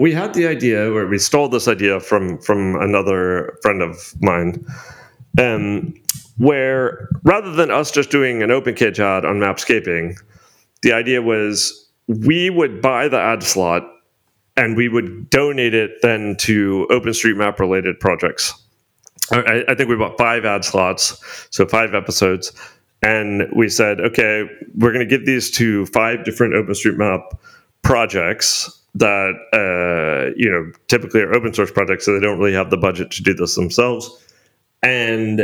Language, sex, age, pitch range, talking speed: English, male, 40-59, 100-125 Hz, 165 wpm